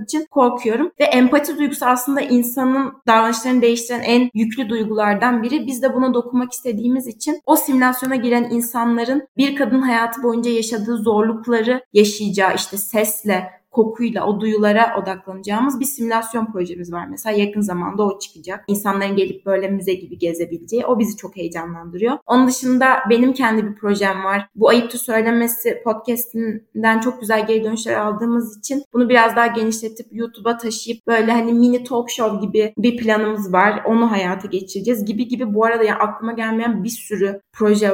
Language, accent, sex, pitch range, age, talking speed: Turkish, native, female, 210-245 Hz, 20-39, 155 wpm